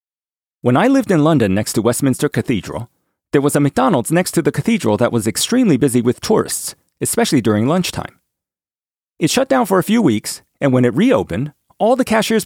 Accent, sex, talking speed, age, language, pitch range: American, male, 195 wpm, 30-49, English, 110-175 Hz